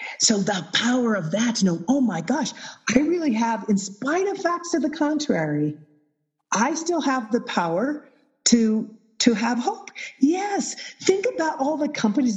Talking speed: 175 wpm